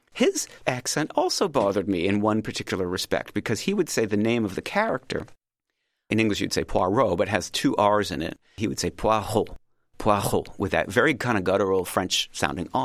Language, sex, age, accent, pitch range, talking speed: English, male, 40-59, American, 95-115 Hz, 195 wpm